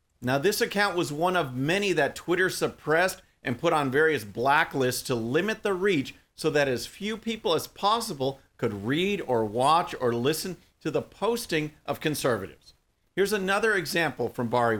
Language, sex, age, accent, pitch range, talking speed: English, male, 50-69, American, 125-185 Hz, 170 wpm